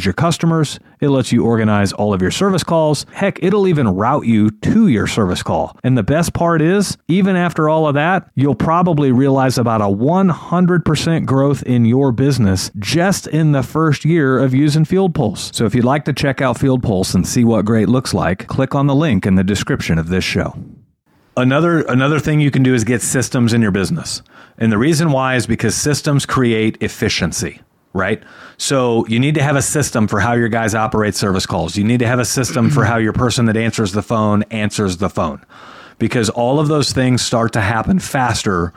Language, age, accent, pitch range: English, 40-59, American, 110-150 Hz